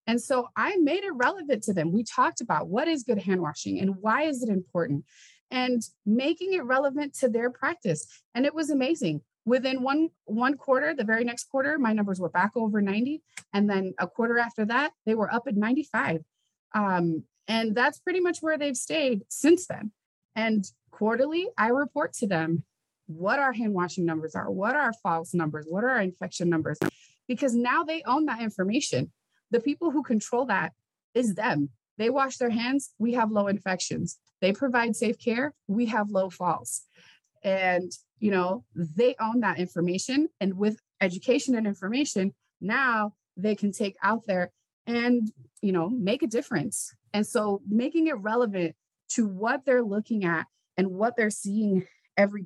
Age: 30-49